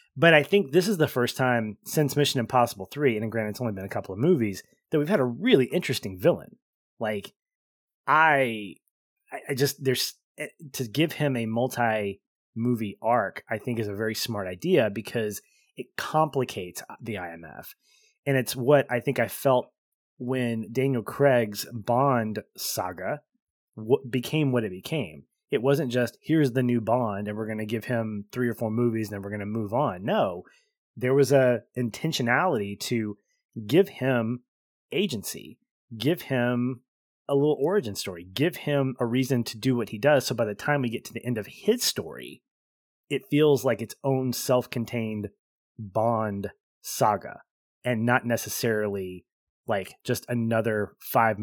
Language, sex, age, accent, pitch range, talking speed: English, male, 20-39, American, 110-140 Hz, 165 wpm